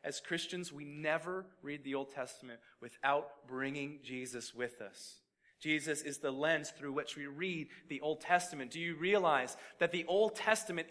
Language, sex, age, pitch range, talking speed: English, male, 30-49, 130-170 Hz, 170 wpm